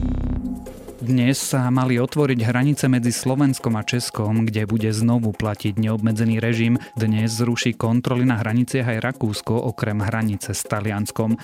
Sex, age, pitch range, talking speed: male, 30-49, 105-120 Hz, 135 wpm